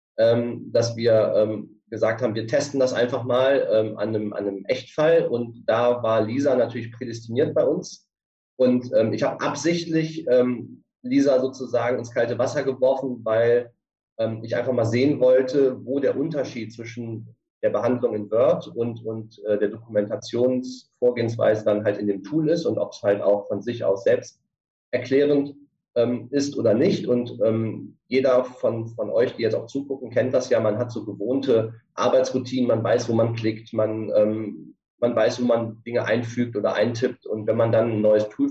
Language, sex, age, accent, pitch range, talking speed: German, male, 30-49, German, 110-135 Hz, 170 wpm